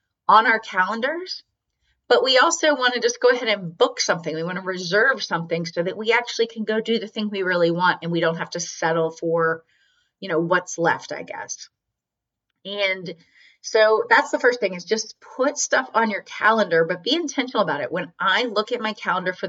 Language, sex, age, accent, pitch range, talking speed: English, female, 30-49, American, 170-220 Hz, 210 wpm